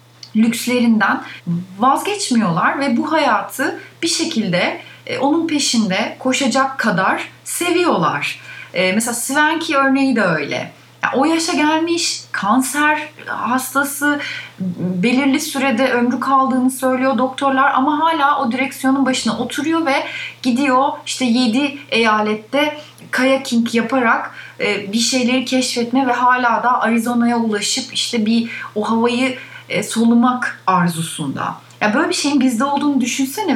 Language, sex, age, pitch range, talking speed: Turkish, female, 30-49, 185-265 Hz, 115 wpm